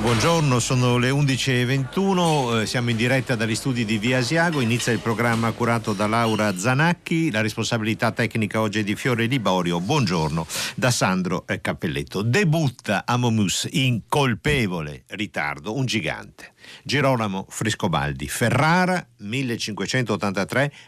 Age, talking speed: 50-69, 125 wpm